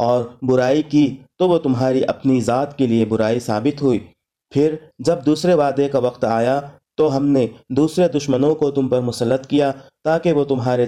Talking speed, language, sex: 180 wpm, Urdu, male